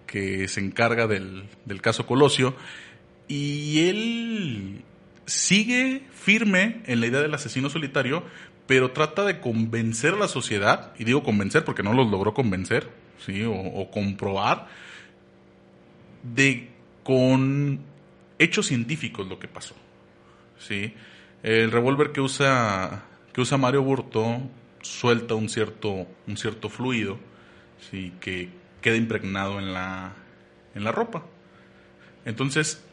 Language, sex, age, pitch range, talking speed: Spanish, male, 30-49, 100-140 Hz, 125 wpm